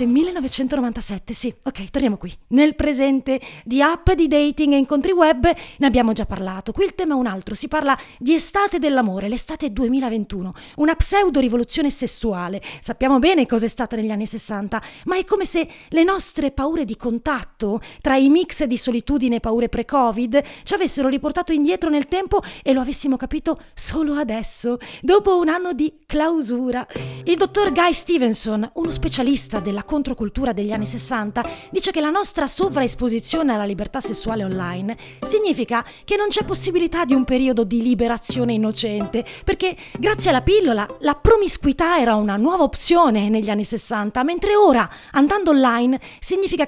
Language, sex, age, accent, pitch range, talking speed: Italian, female, 30-49, native, 230-330 Hz, 160 wpm